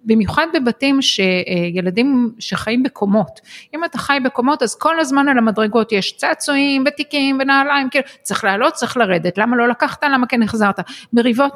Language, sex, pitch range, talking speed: Hebrew, female, 195-260 Hz, 160 wpm